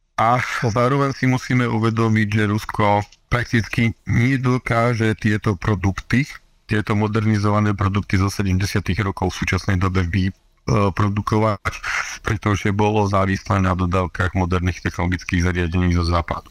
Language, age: Slovak, 50-69